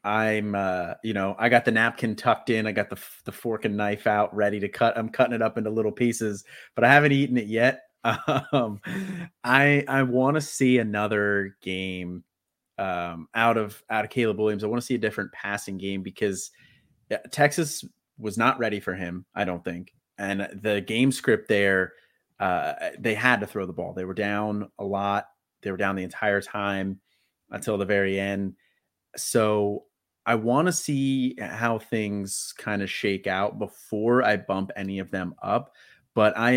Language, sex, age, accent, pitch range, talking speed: English, male, 30-49, American, 95-115 Hz, 185 wpm